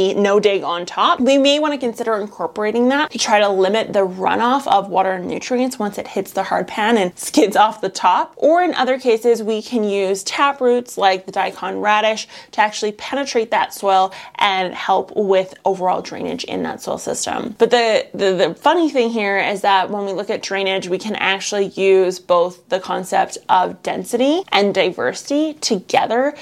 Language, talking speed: English, 195 wpm